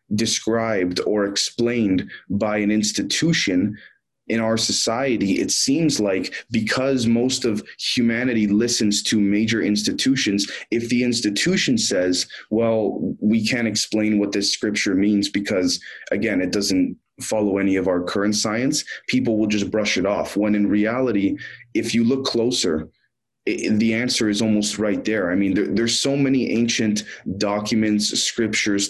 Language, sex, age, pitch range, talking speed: English, male, 20-39, 100-115 Hz, 145 wpm